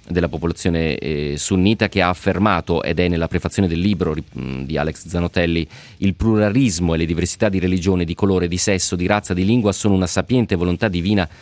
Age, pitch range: 30-49, 90-120 Hz